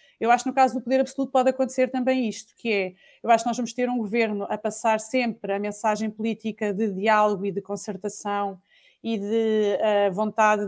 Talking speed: 200 wpm